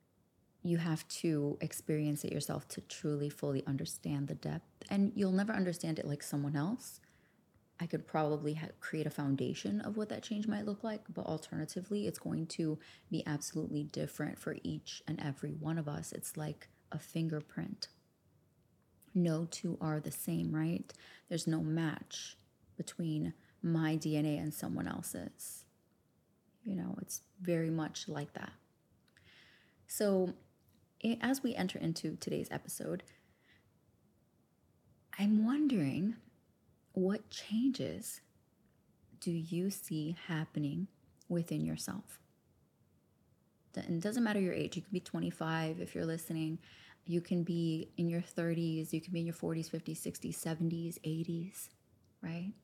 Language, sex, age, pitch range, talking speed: English, female, 20-39, 155-190 Hz, 140 wpm